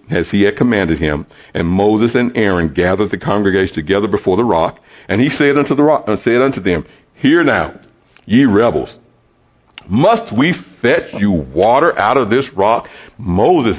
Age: 60-79